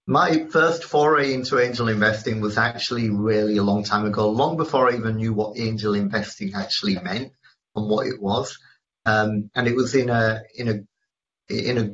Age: 40-59